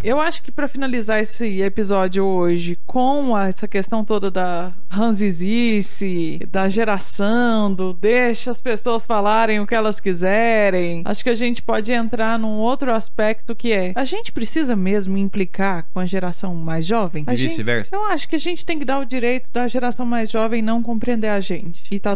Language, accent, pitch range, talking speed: Portuguese, Brazilian, 195-260 Hz, 185 wpm